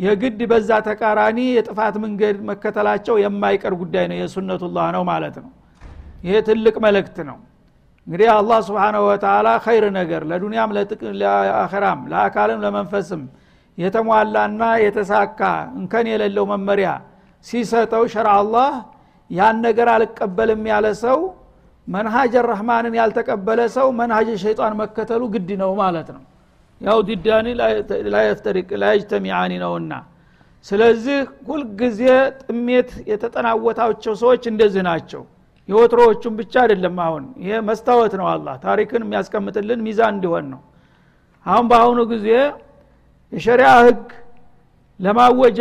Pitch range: 205-235 Hz